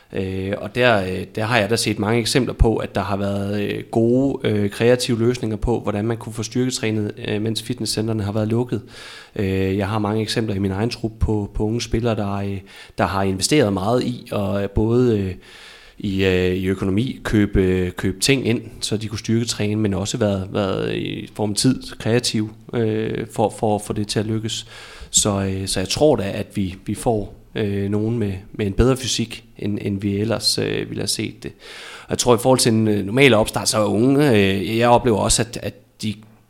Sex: male